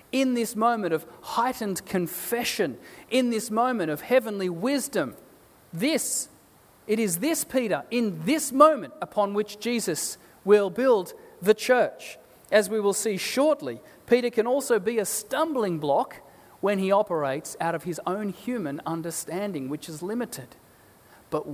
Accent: Australian